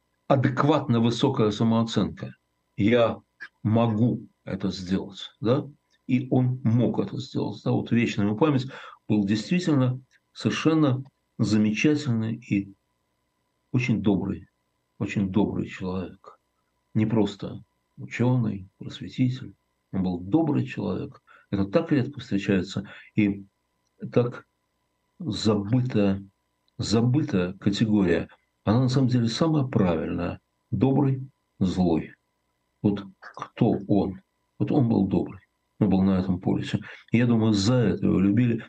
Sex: male